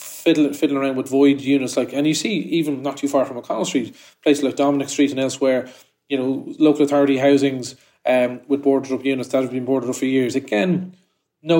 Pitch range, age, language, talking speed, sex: 130-145 Hz, 20-39, English, 215 wpm, male